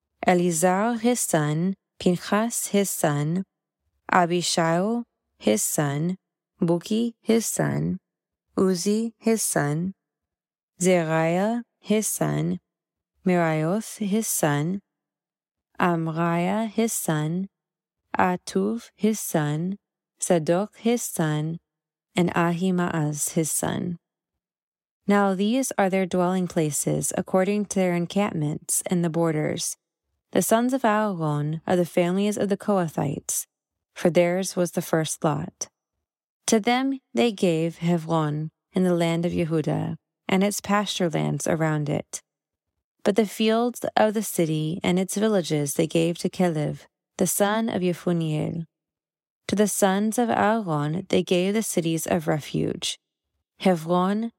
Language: English